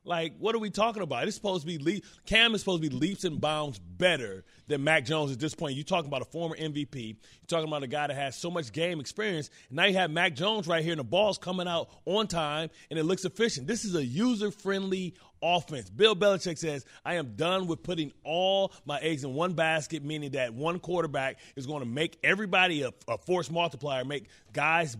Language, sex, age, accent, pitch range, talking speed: English, male, 30-49, American, 140-175 Hz, 235 wpm